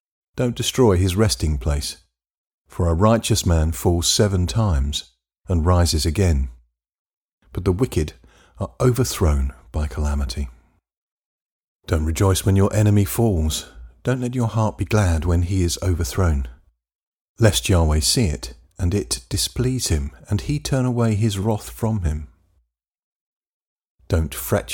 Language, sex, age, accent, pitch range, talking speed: English, male, 50-69, British, 80-105 Hz, 135 wpm